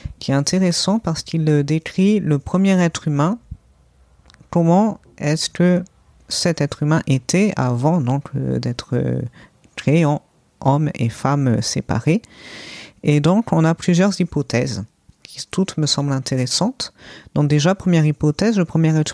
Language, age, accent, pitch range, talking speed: French, 40-59, French, 140-180 Hz, 140 wpm